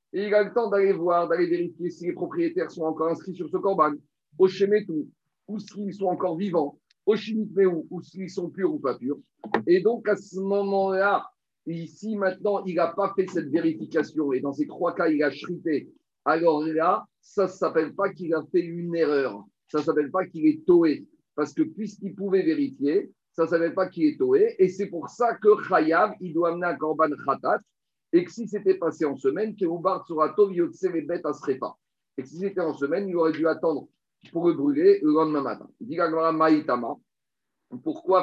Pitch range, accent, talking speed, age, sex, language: 160-215 Hz, French, 205 wpm, 50-69, male, French